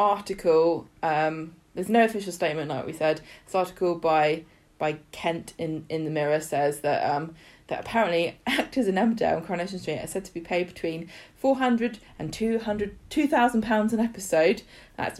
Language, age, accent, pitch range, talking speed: English, 20-39, British, 160-200 Hz, 165 wpm